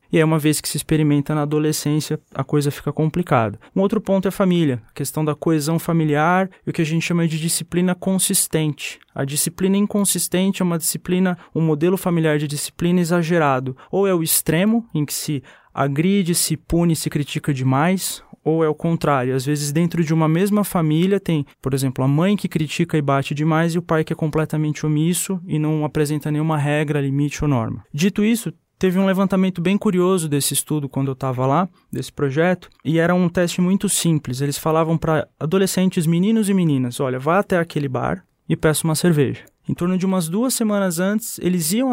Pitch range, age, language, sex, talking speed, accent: 150-185 Hz, 20-39, Portuguese, male, 200 wpm, Brazilian